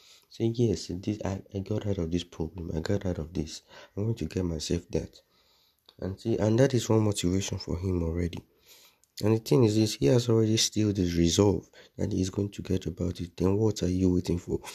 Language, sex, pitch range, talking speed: English, male, 90-105 Hz, 225 wpm